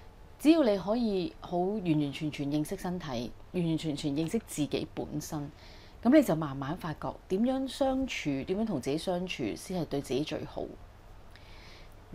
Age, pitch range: 30-49, 135-185 Hz